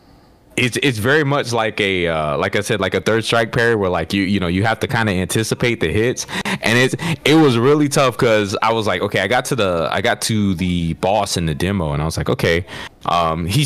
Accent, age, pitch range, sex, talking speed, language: American, 20-39, 90-130 Hz, male, 255 wpm, English